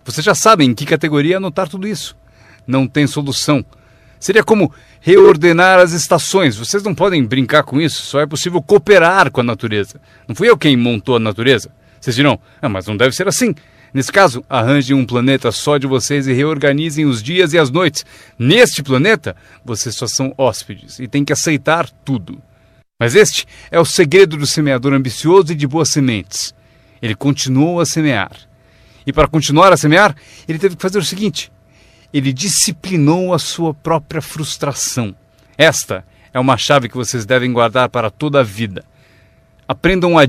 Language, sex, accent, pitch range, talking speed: Portuguese, male, Brazilian, 120-165 Hz, 175 wpm